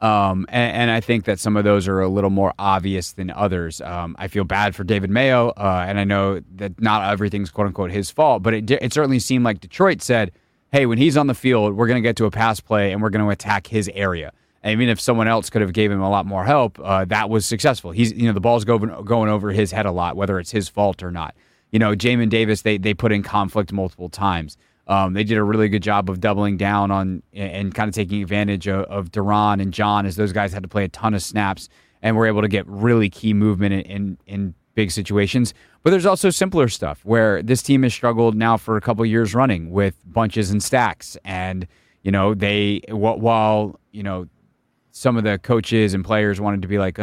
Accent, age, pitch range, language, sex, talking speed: American, 30-49, 100-115 Hz, English, male, 245 wpm